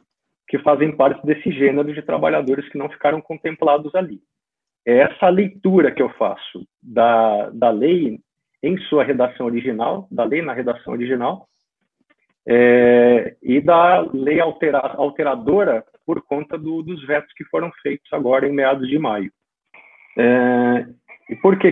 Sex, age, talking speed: male, 40-59, 145 wpm